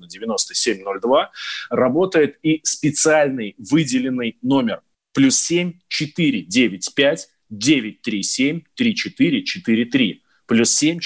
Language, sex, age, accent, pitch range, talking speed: Russian, male, 20-39, native, 125-170 Hz, 110 wpm